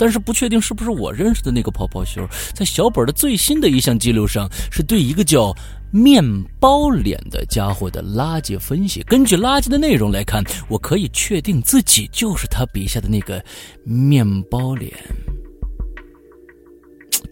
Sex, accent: male, native